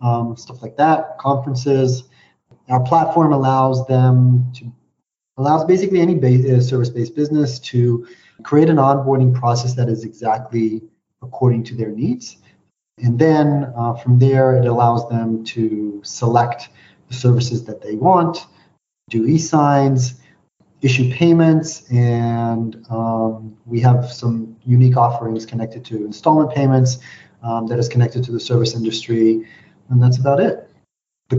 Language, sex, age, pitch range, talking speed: English, male, 30-49, 115-130 Hz, 140 wpm